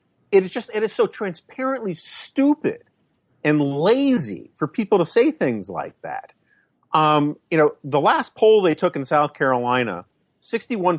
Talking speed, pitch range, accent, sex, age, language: 165 wpm, 120-180 Hz, American, male, 40-59, English